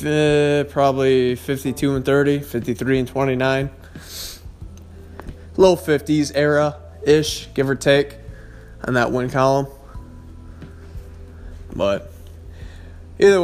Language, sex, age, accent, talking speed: English, male, 20-39, American, 90 wpm